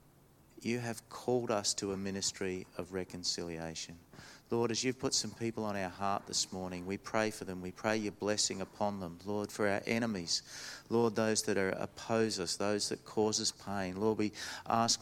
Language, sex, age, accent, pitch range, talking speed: English, male, 40-59, Australian, 90-105 Hz, 190 wpm